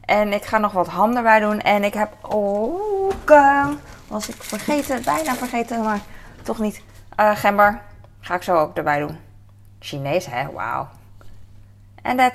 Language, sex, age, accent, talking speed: Dutch, female, 20-39, Dutch, 160 wpm